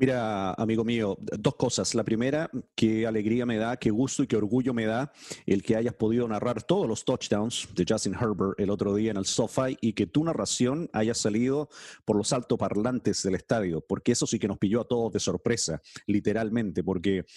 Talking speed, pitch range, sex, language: 200 wpm, 105-125 Hz, male, English